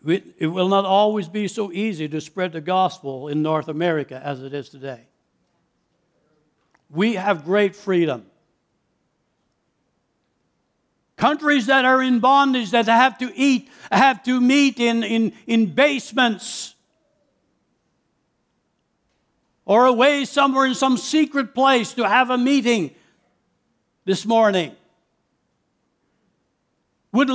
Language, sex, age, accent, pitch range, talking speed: English, male, 60-79, American, 180-255 Hz, 110 wpm